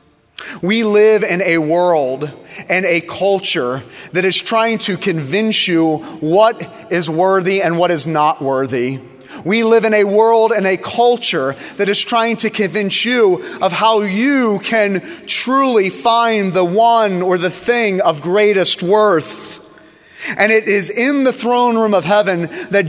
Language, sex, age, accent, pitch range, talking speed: English, male, 30-49, American, 180-235 Hz, 155 wpm